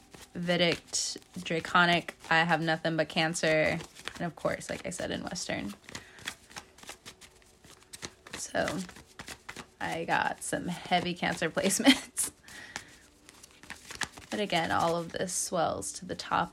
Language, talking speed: English, 115 wpm